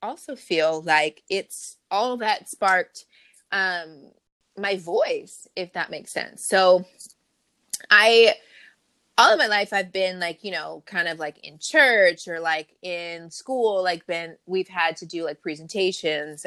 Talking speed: 155 wpm